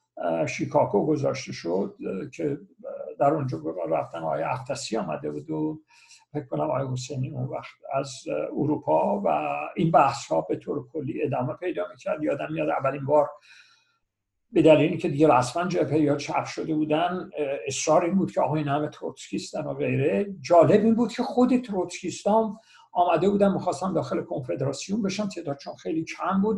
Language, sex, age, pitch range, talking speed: Persian, male, 60-79, 150-195 Hz, 160 wpm